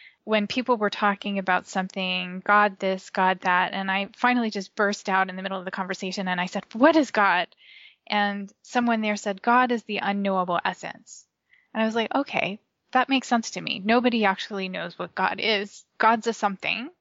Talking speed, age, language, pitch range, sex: 200 wpm, 10-29, English, 190-220 Hz, female